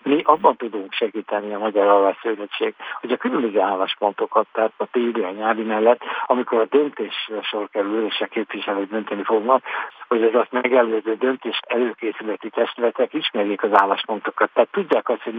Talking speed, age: 150 wpm, 60-79